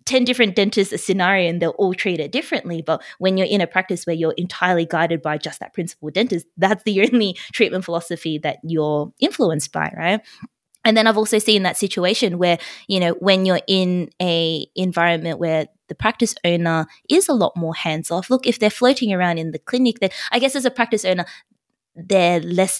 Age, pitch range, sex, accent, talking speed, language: 20-39, 160-195 Hz, female, Australian, 205 wpm, English